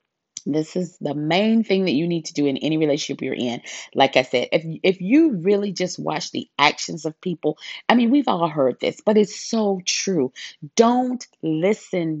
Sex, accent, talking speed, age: female, American, 195 wpm, 30-49